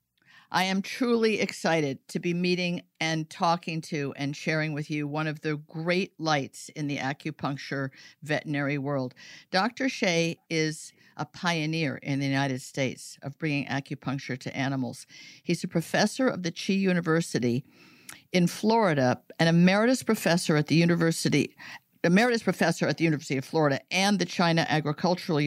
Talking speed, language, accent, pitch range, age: 150 wpm, English, American, 145-175 Hz, 50-69